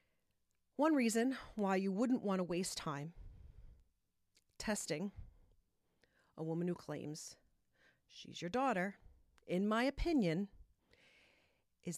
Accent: American